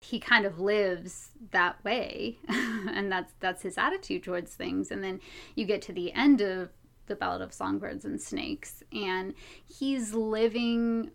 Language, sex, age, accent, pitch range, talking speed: English, female, 20-39, American, 195-275 Hz, 160 wpm